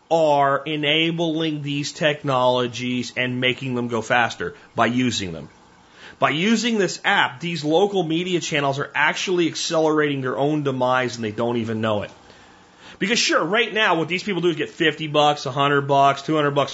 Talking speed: 170 wpm